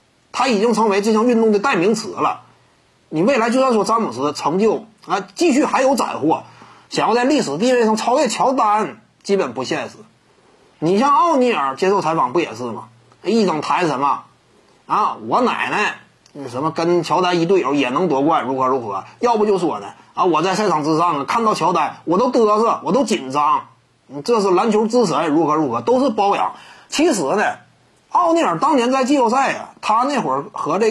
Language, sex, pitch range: Chinese, male, 175-245 Hz